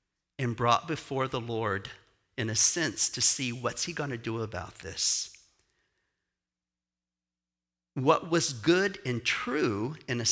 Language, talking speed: English, 140 wpm